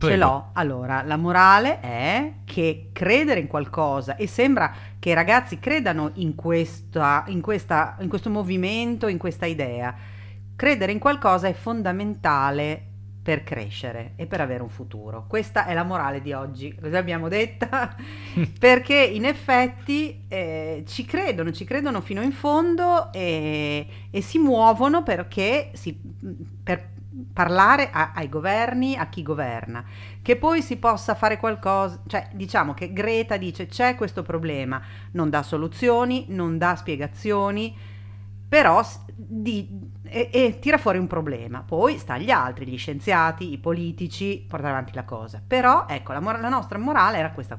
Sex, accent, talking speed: female, native, 155 wpm